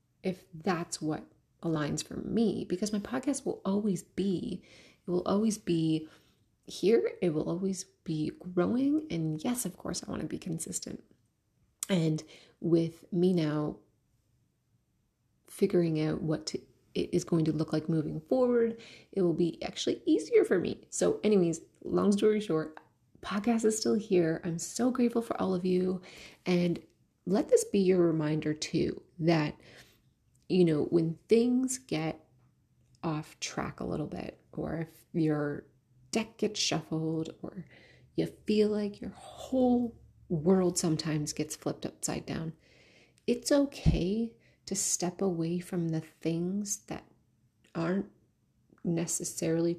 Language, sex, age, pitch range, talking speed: English, female, 30-49, 160-210 Hz, 140 wpm